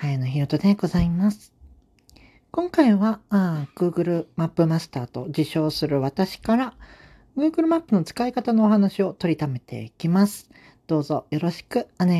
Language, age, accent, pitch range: Japanese, 40-59, native, 150-230 Hz